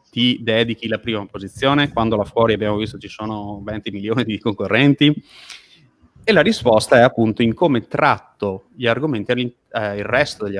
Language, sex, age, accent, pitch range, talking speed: Italian, male, 30-49, native, 105-135 Hz, 170 wpm